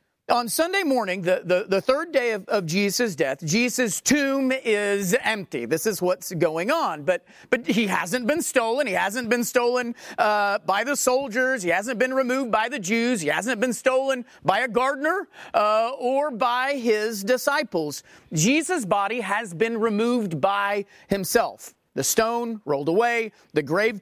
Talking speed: 165 wpm